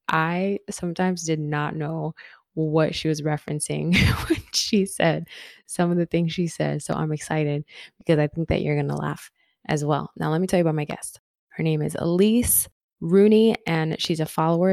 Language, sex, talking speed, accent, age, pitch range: English, female, 195 wpm, American, 20-39, 155-185 Hz